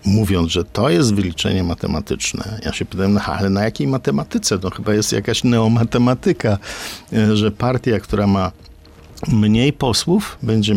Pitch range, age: 90-110 Hz, 50-69